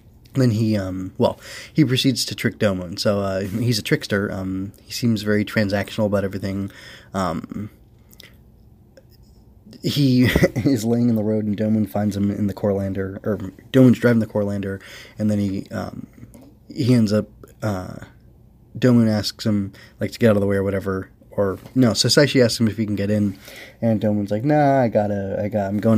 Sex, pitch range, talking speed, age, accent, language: male, 100-115 Hz, 185 wpm, 20-39, American, English